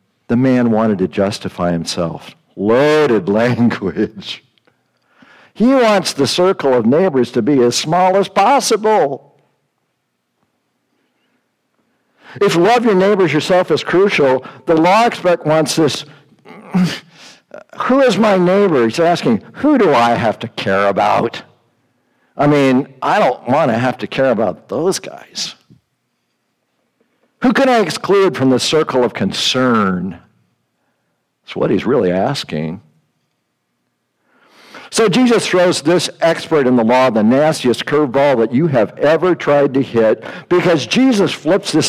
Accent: American